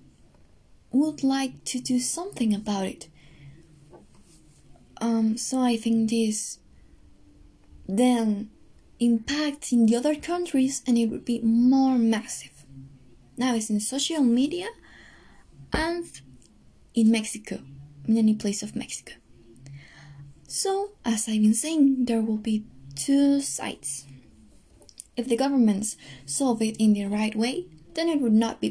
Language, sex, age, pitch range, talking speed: Spanish, female, 20-39, 195-260 Hz, 125 wpm